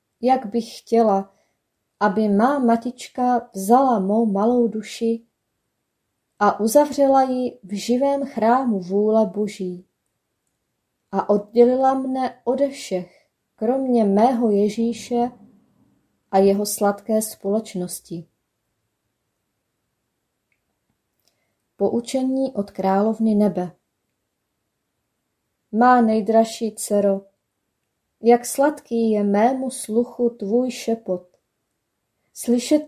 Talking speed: 80 wpm